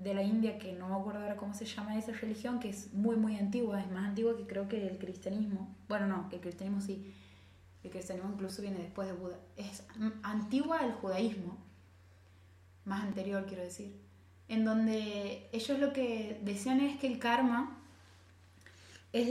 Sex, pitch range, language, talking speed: female, 175-220 Hz, Spanish, 175 wpm